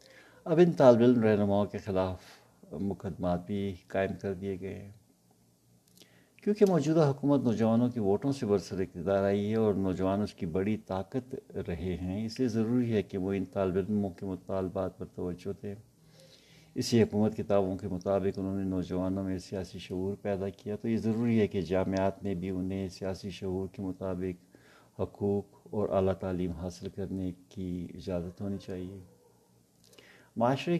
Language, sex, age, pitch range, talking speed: Urdu, male, 60-79, 95-105 Hz, 160 wpm